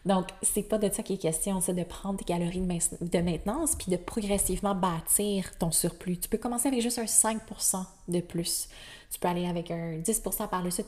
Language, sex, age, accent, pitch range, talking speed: French, female, 20-39, Canadian, 180-205 Hz, 215 wpm